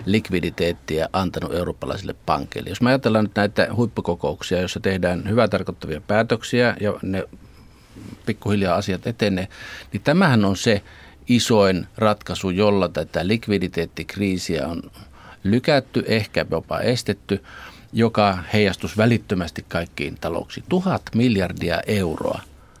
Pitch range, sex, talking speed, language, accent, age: 95-115 Hz, male, 110 wpm, Finnish, native, 50-69